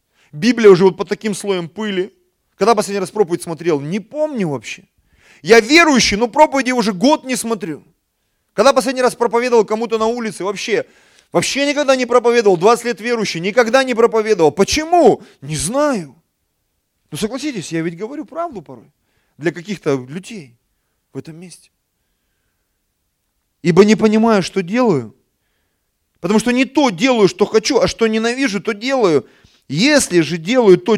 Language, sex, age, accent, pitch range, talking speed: Russian, male, 30-49, native, 140-230 Hz, 150 wpm